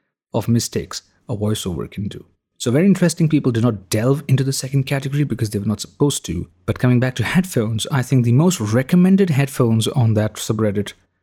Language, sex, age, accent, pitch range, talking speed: English, male, 30-49, Indian, 105-130 Hz, 200 wpm